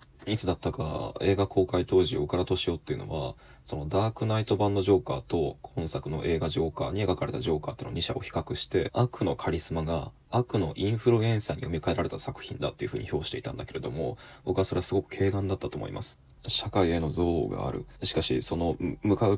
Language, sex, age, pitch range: Japanese, male, 20-39, 80-105 Hz